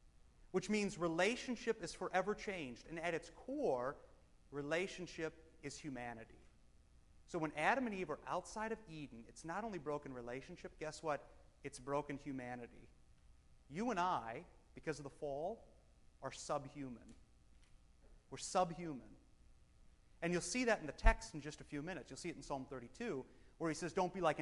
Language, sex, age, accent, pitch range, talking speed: English, male, 30-49, American, 130-180 Hz, 165 wpm